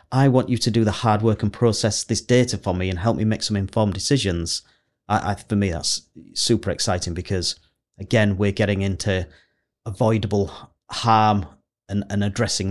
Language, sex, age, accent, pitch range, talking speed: English, male, 30-49, British, 95-115 Hz, 170 wpm